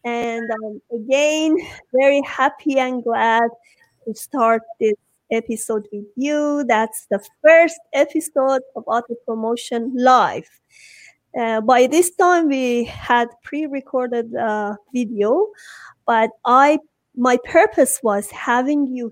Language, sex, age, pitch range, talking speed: English, female, 30-49, 225-295 Hz, 115 wpm